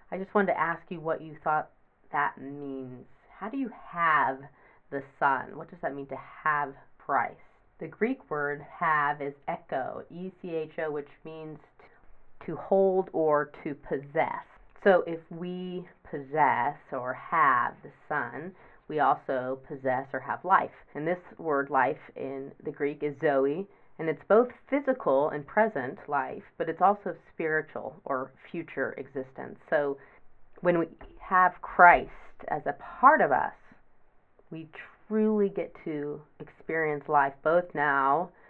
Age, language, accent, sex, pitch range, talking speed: 30-49, English, American, female, 145-185 Hz, 145 wpm